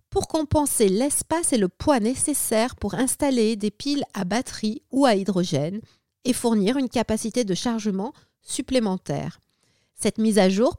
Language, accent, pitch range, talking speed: French, French, 205-275 Hz, 150 wpm